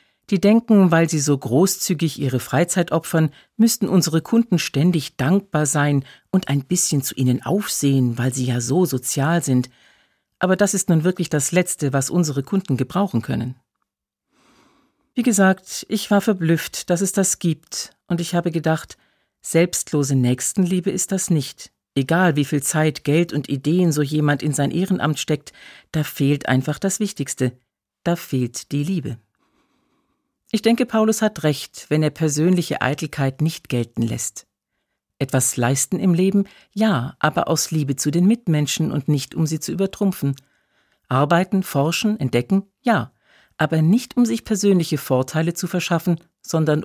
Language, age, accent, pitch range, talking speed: German, 50-69, German, 140-185 Hz, 155 wpm